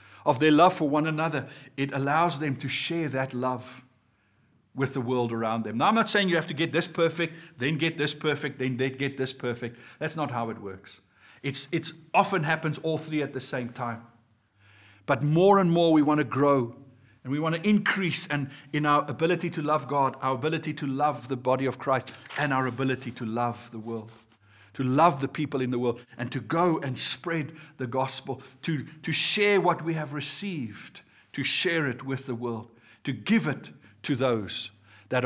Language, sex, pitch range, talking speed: English, male, 125-170 Hz, 205 wpm